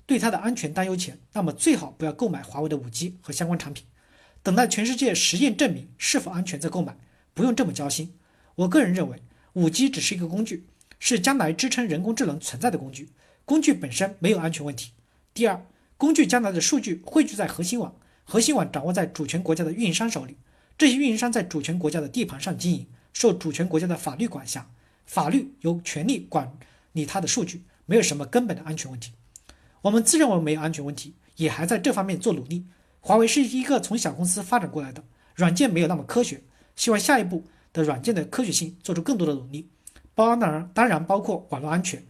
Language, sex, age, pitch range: Chinese, male, 50-69, 155-230 Hz